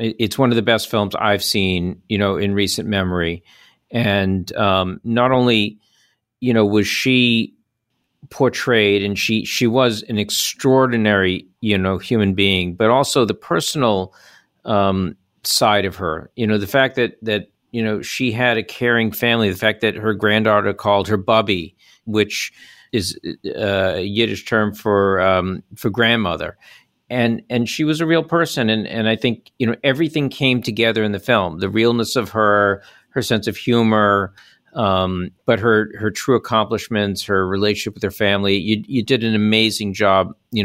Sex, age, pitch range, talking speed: male, 50-69, 100-115 Hz, 170 wpm